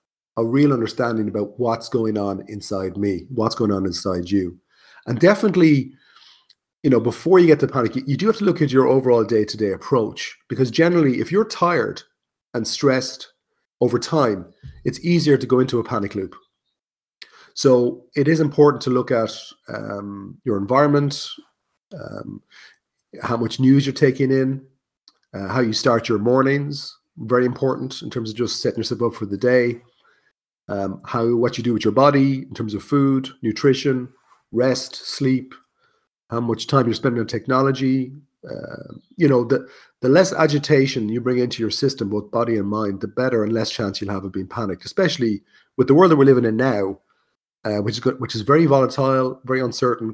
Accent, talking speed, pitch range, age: Irish, 185 wpm, 110-135 Hz, 30-49